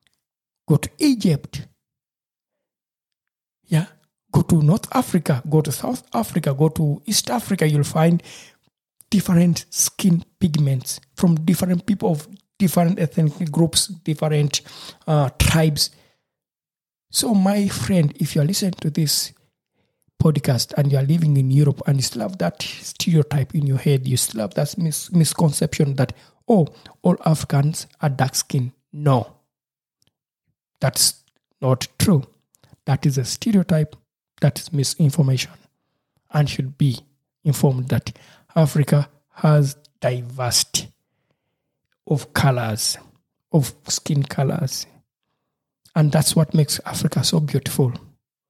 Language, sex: English, male